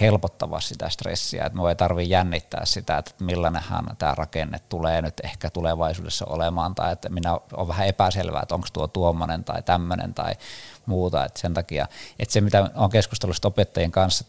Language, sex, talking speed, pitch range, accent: Finnish, male, 175 wpm, 85-105 Hz, native